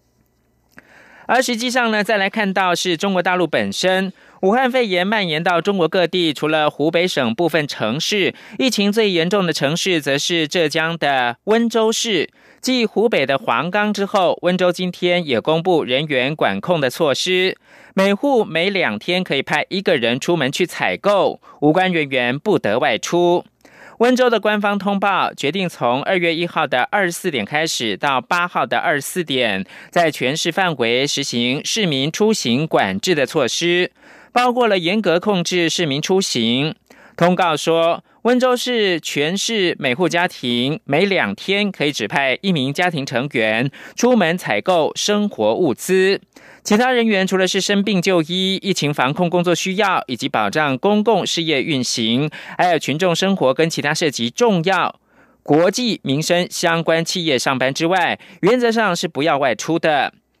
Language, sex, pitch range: German, male, 150-200 Hz